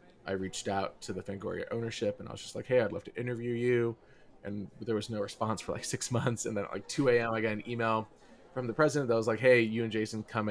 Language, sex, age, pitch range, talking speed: English, male, 20-39, 100-115 Hz, 275 wpm